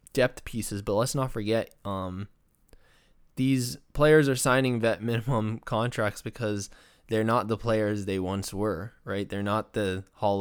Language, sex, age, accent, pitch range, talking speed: English, male, 20-39, American, 100-115 Hz, 155 wpm